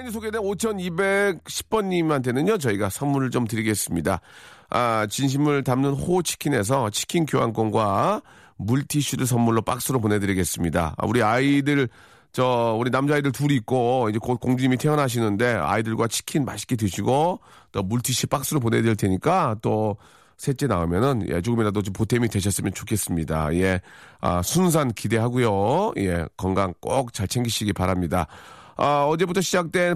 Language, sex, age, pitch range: Korean, male, 40-59, 110-155 Hz